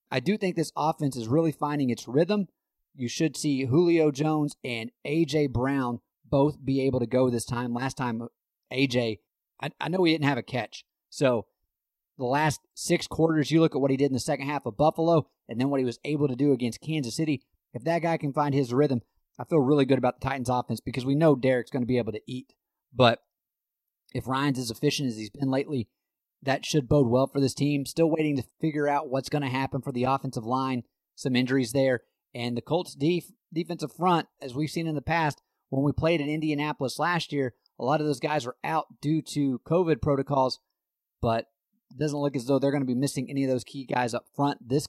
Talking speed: 225 wpm